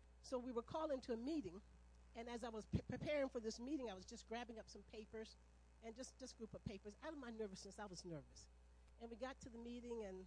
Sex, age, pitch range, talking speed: female, 50-69, 185-255 Hz, 255 wpm